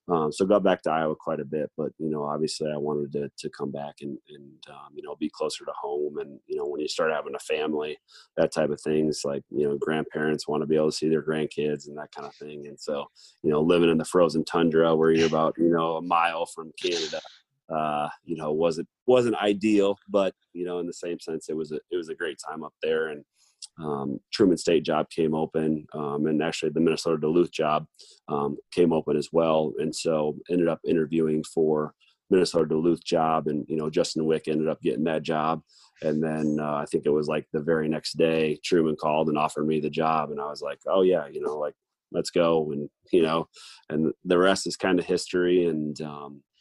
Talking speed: 230 wpm